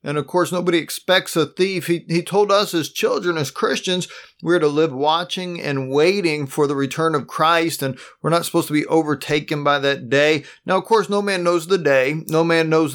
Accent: American